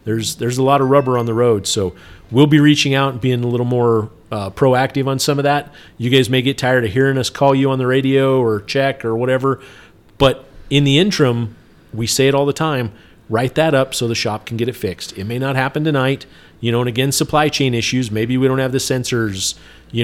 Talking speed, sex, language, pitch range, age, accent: 245 wpm, male, English, 115-135 Hz, 40-59, American